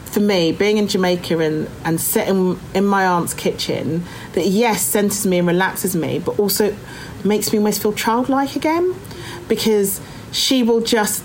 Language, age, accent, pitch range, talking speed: English, 40-59, British, 165-205 Hz, 165 wpm